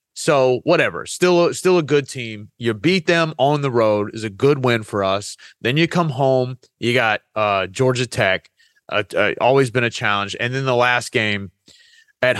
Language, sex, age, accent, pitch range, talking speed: English, male, 30-49, American, 115-155 Hz, 195 wpm